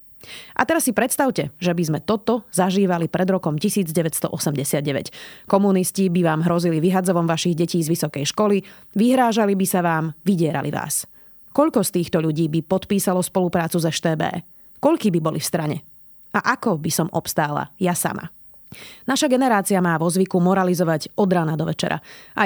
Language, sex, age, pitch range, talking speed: Slovak, female, 30-49, 170-210 Hz, 160 wpm